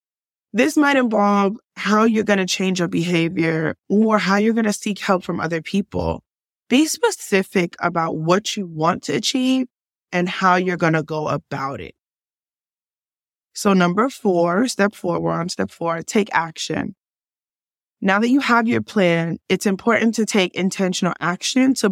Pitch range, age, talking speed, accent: 175-215 Hz, 20-39, 165 wpm, American